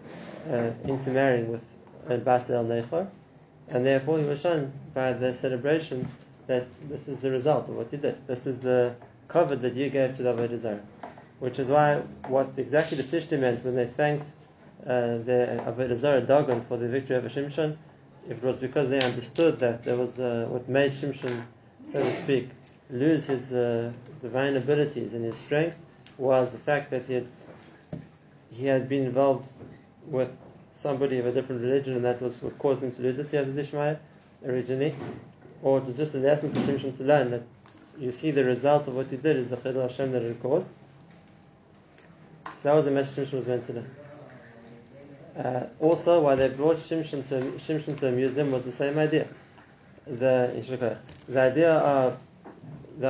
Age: 20-39